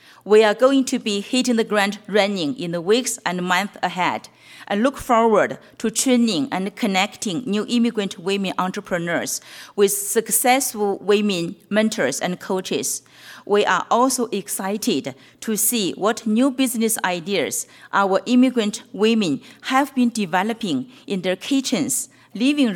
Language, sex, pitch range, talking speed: English, female, 195-245 Hz, 135 wpm